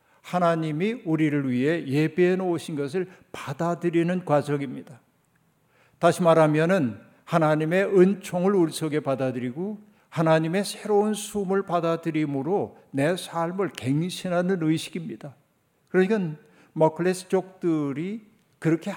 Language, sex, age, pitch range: Korean, male, 60-79, 145-175 Hz